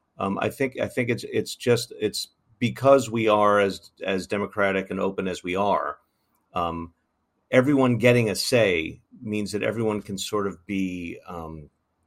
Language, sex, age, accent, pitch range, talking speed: English, male, 50-69, American, 95-135 Hz, 165 wpm